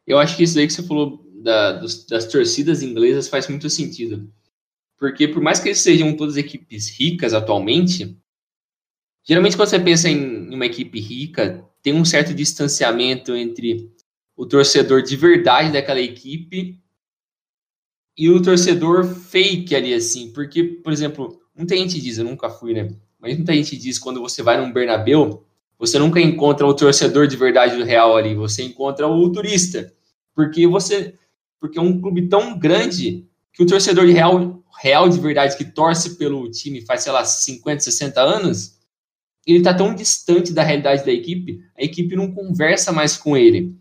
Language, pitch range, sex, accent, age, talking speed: Portuguese, 130-175 Hz, male, Brazilian, 20-39, 170 wpm